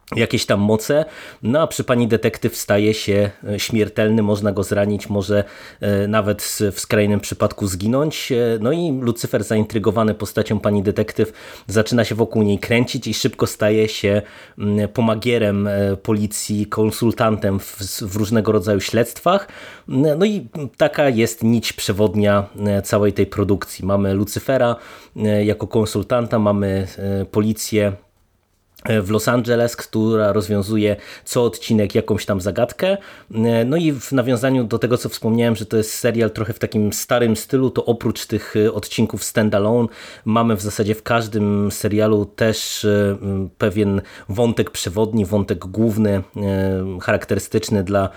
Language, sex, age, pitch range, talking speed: Polish, male, 20-39, 105-115 Hz, 130 wpm